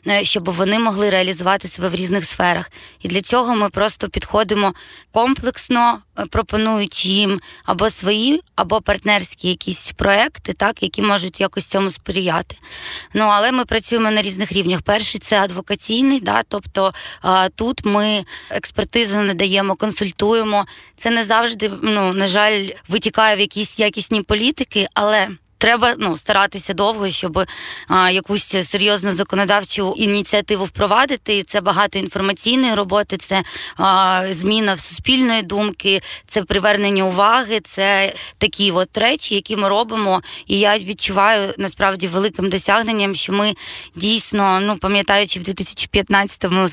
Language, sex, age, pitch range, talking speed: Ukrainian, female, 20-39, 190-215 Hz, 135 wpm